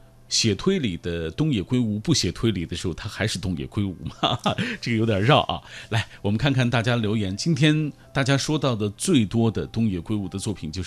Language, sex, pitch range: Chinese, male, 90-125 Hz